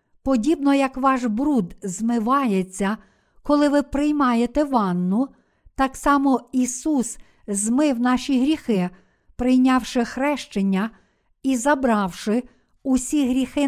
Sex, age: female, 50-69